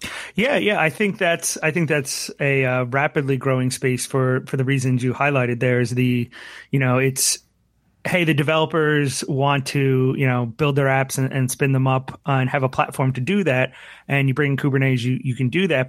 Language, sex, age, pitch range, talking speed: English, male, 30-49, 130-145 Hz, 220 wpm